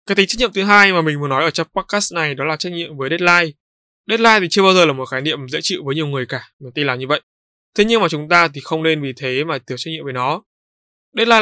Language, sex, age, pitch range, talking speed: Vietnamese, male, 20-39, 140-180 Hz, 300 wpm